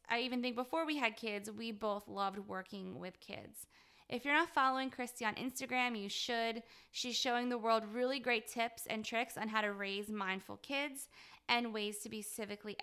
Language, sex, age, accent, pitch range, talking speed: English, female, 20-39, American, 215-250 Hz, 195 wpm